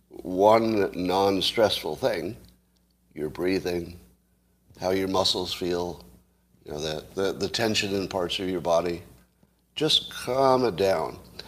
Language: English